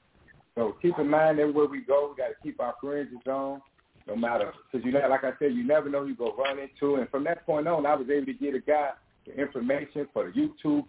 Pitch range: 115-145 Hz